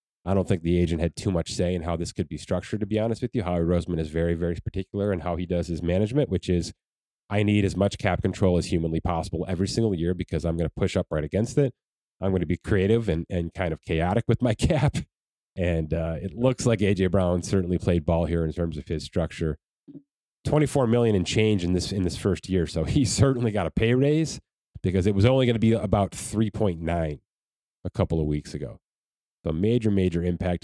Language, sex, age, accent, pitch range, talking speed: English, male, 30-49, American, 85-105 Hz, 235 wpm